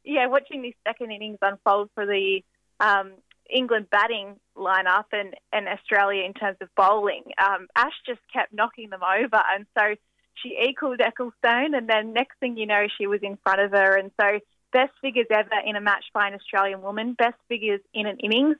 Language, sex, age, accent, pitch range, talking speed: English, female, 10-29, Australian, 195-235 Hz, 195 wpm